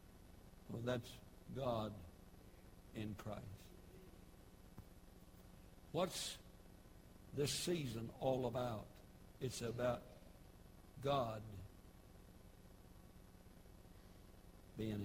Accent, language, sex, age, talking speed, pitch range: American, English, male, 60-79, 55 wpm, 95-130 Hz